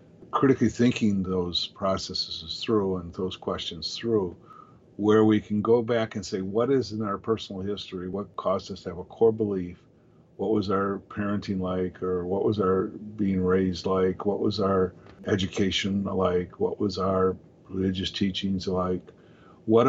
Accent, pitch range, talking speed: American, 95-110 Hz, 165 wpm